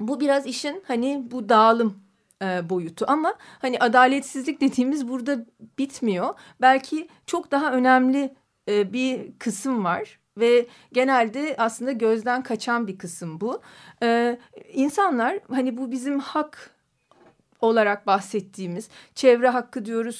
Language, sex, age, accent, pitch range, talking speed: Turkish, female, 40-59, native, 230-280 Hz, 120 wpm